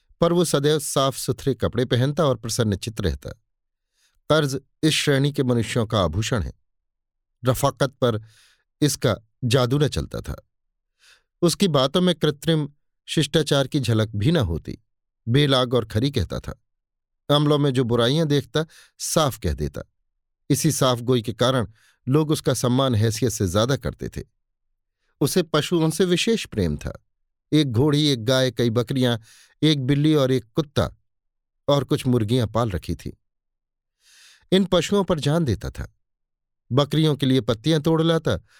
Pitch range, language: 110-150 Hz, Hindi